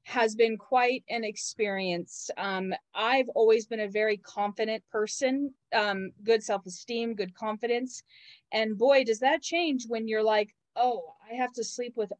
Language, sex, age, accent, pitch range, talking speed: English, female, 30-49, American, 205-260 Hz, 155 wpm